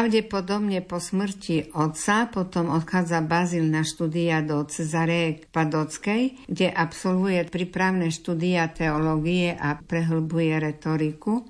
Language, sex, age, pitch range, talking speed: Slovak, female, 50-69, 160-180 Hz, 105 wpm